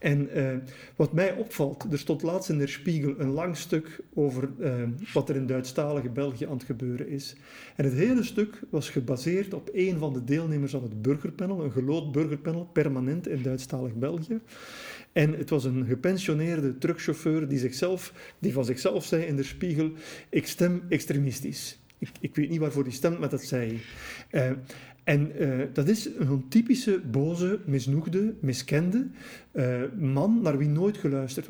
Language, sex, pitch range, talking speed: Dutch, male, 135-170 Hz, 175 wpm